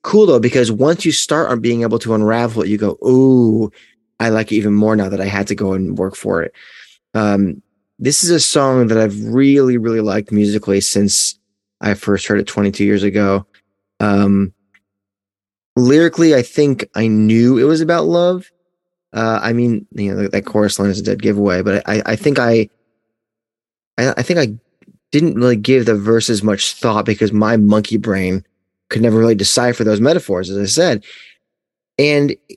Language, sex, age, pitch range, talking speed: English, male, 20-39, 105-130 Hz, 185 wpm